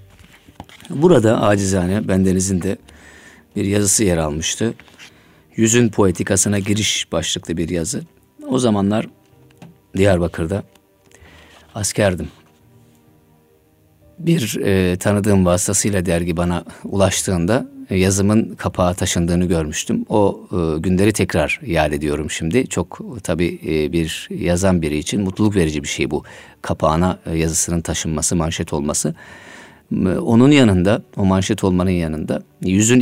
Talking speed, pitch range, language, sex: 105 wpm, 85-105 Hz, Turkish, male